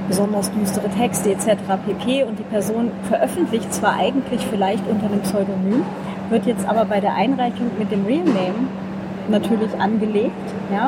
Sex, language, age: female, German, 30-49